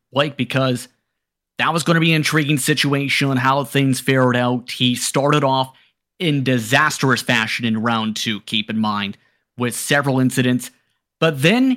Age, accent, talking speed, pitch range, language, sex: 30-49, American, 160 wpm, 130-180 Hz, English, male